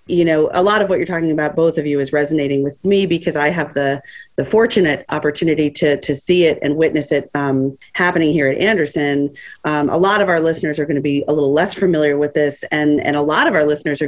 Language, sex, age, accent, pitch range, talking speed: English, female, 40-59, American, 145-180 Hz, 245 wpm